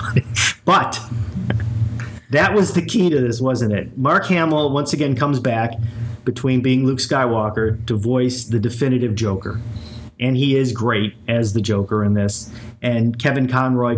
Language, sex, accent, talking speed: English, male, American, 155 wpm